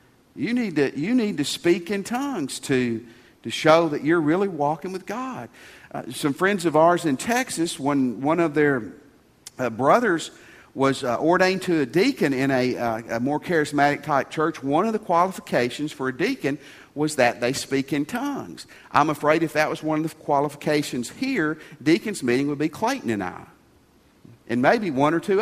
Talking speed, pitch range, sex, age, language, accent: 190 wpm, 150-240 Hz, male, 50-69, English, American